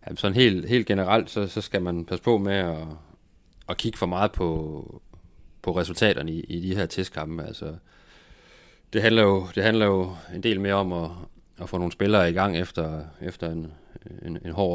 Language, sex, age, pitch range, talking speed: Danish, male, 30-49, 80-95 Hz, 185 wpm